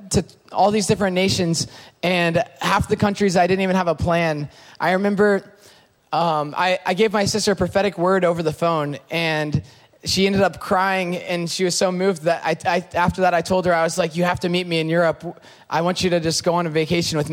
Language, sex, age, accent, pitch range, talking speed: English, male, 20-39, American, 170-215 Hz, 230 wpm